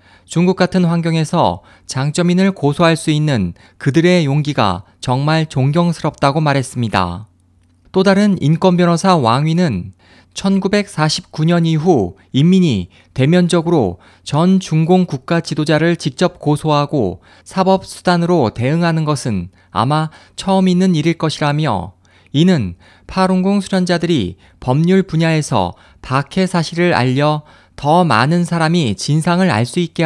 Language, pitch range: Korean, 110-175 Hz